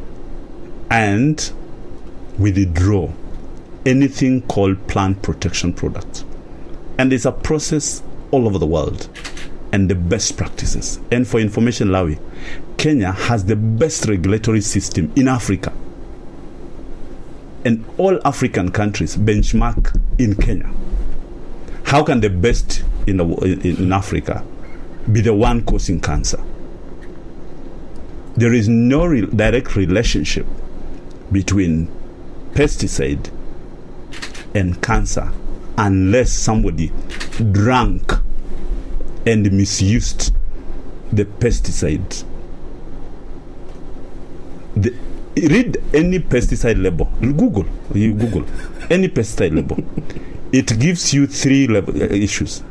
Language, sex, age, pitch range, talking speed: English, male, 50-69, 90-120 Hz, 95 wpm